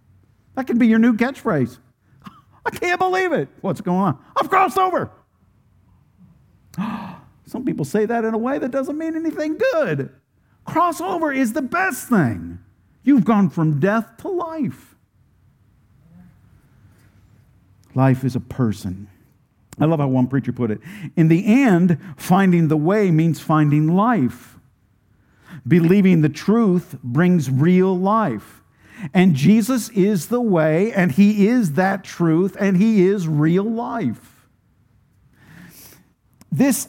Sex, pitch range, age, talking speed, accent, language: male, 135-220 Hz, 50-69, 130 wpm, American, English